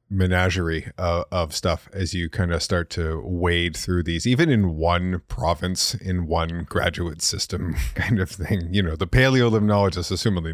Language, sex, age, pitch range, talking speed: English, male, 30-49, 85-105 Hz, 160 wpm